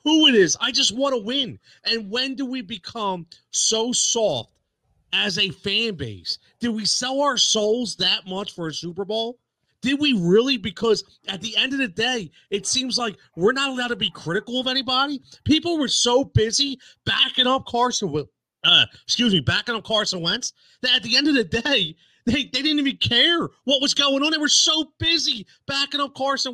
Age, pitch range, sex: 30-49, 175-255 Hz, male